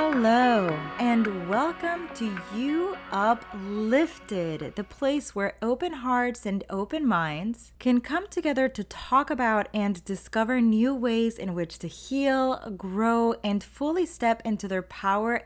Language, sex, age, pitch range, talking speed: English, female, 20-39, 180-235 Hz, 135 wpm